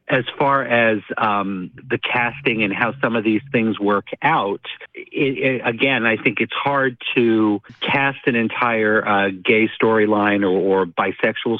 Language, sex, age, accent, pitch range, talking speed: English, male, 50-69, American, 100-120 Hz, 150 wpm